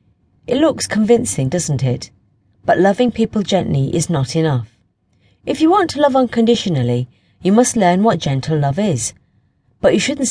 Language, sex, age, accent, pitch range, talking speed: English, female, 40-59, British, 120-190 Hz, 165 wpm